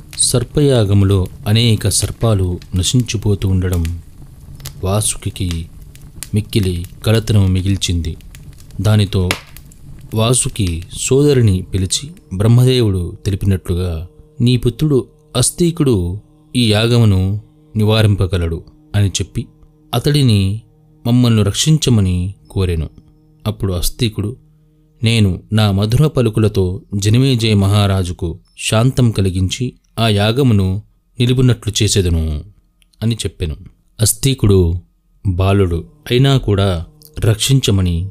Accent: native